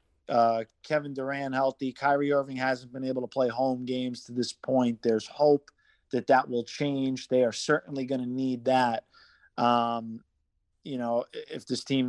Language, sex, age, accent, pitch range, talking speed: English, male, 20-39, American, 125-140 Hz, 180 wpm